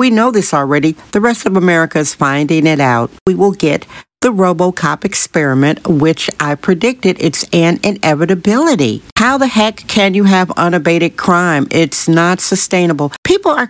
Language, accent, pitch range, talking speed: English, American, 155-200 Hz, 160 wpm